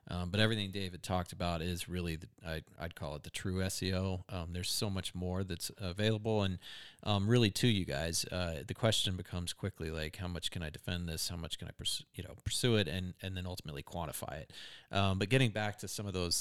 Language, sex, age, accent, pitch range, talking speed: English, male, 40-59, American, 90-105 Hz, 215 wpm